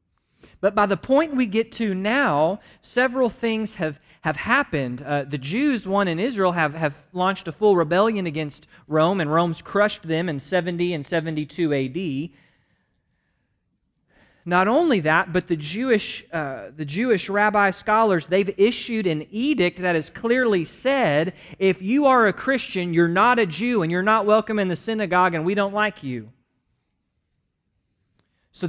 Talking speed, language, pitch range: 160 wpm, English, 160-215 Hz